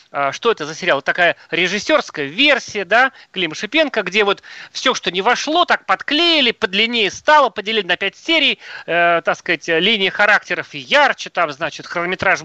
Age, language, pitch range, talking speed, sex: 30-49, Russian, 175-255 Hz, 165 wpm, male